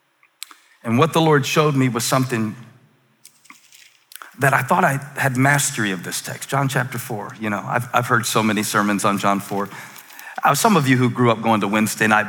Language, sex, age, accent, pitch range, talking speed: English, male, 40-59, American, 115-140 Hz, 200 wpm